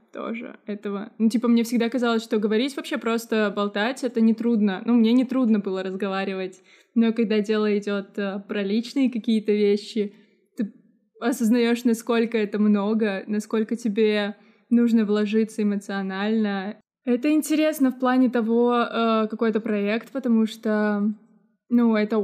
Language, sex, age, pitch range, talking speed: Russian, female, 20-39, 210-235 Hz, 140 wpm